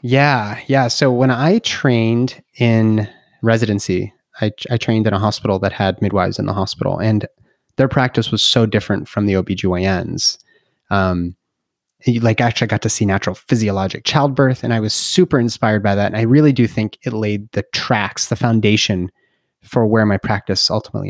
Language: English